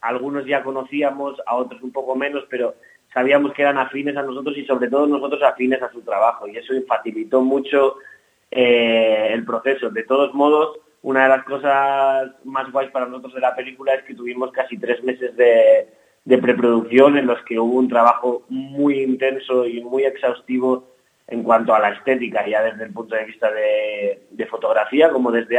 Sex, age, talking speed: male, 30-49, 190 wpm